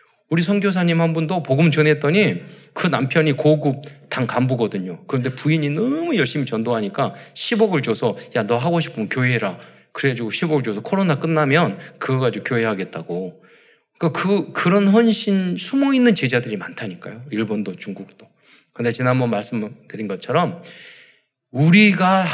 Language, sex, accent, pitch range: Korean, male, native, 125-185 Hz